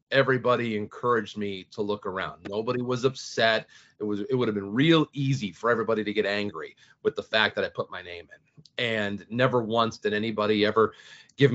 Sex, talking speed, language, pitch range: male, 200 wpm, English, 110-150 Hz